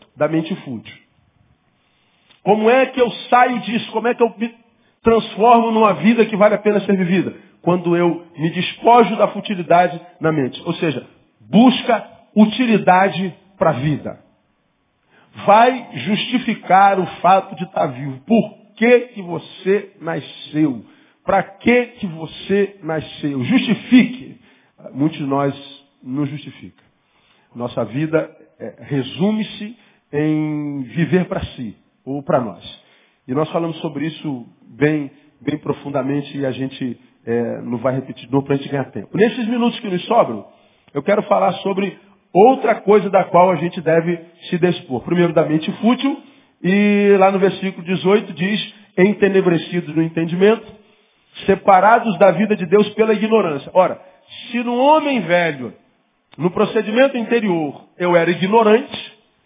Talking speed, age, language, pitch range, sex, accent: 140 wpm, 40-59, Portuguese, 155-215 Hz, male, Brazilian